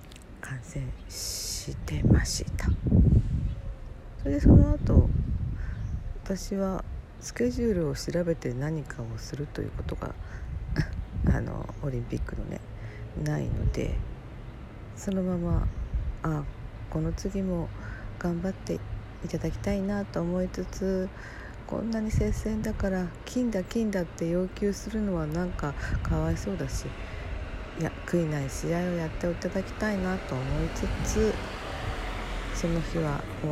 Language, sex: Japanese, female